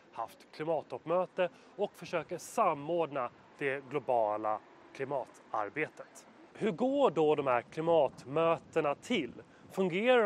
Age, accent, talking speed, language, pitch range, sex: 30-49, native, 95 wpm, Swedish, 145-195 Hz, male